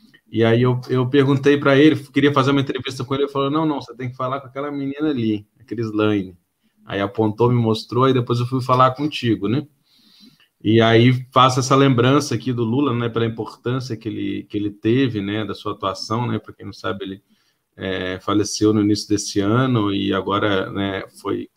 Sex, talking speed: male, 205 wpm